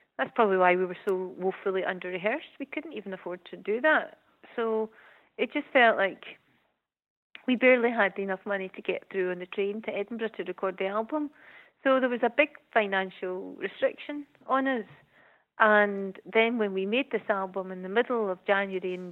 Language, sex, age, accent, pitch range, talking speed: English, female, 30-49, British, 185-230 Hz, 185 wpm